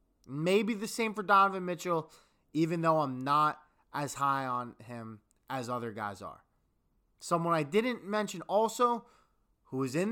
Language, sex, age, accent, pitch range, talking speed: English, male, 20-39, American, 125-175 Hz, 155 wpm